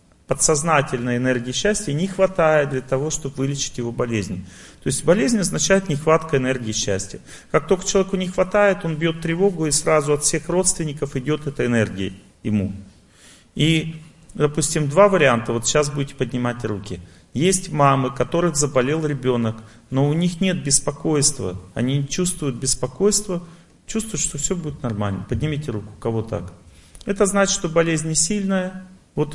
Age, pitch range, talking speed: 40-59, 120-165 Hz, 150 wpm